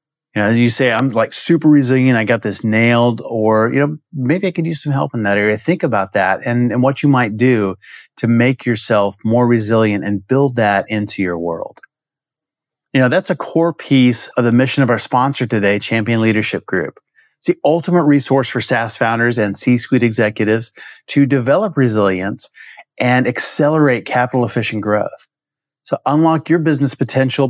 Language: English